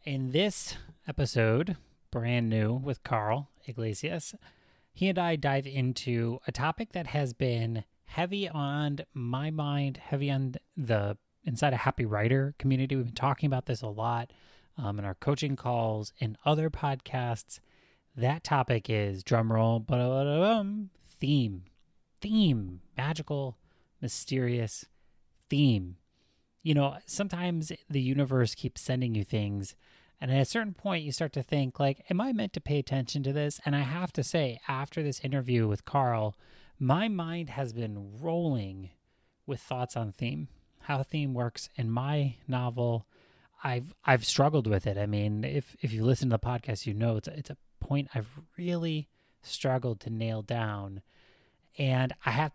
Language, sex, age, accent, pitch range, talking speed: English, male, 30-49, American, 115-145 Hz, 160 wpm